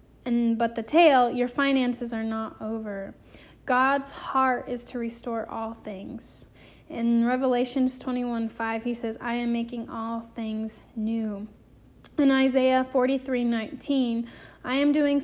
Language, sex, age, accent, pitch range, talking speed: English, female, 10-29, American, 230-280 Hz, 130 wpm